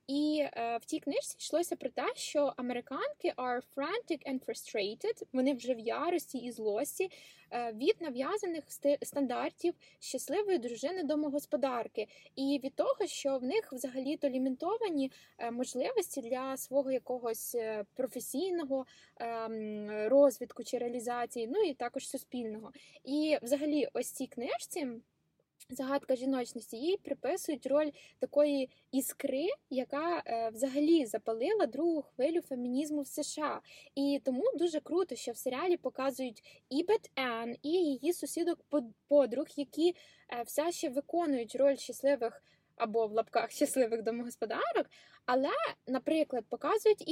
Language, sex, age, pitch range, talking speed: Ukrainian, female, 10-29, 245-300 Hz, 120 wpm